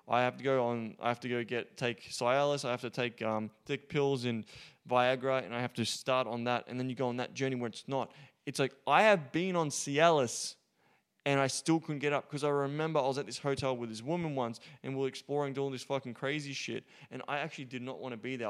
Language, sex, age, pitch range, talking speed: English, male, 20-39, 125-150 Hz, 265 wpm